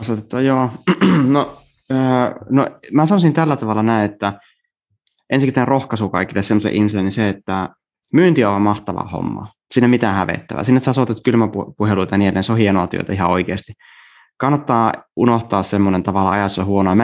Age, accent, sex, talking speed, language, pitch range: 20-39, native, male, 165 wpm, Finnish, 95-120 Hz